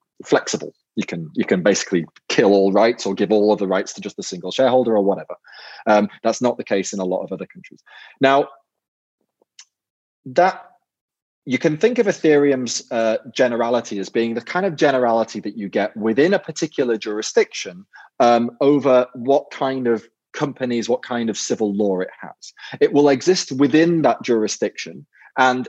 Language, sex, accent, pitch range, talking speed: English, male, British, 105-140 Hz, 175 wpm